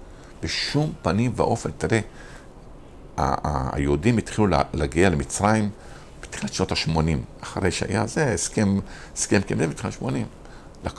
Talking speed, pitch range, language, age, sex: 100 wpm, 80-100 Hz, Hebrew, 50-69, male